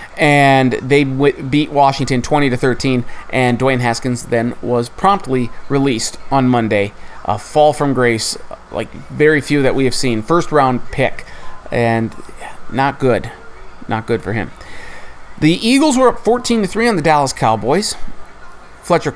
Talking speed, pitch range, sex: 145 wpm, 130-160 Hz, male